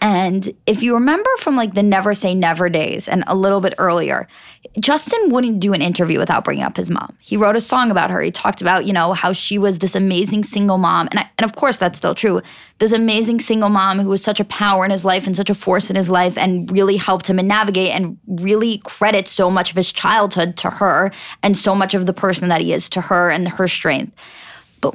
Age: 20-39